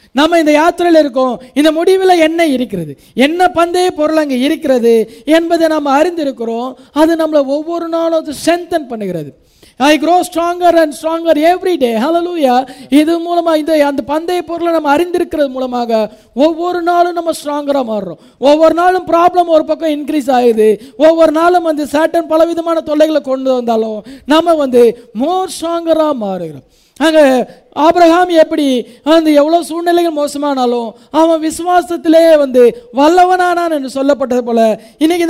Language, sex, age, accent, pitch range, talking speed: English, female, 20-39, Indian, 260-335 Hz, 125 wpm